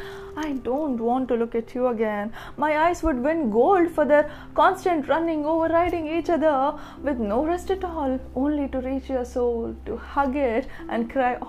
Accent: Indian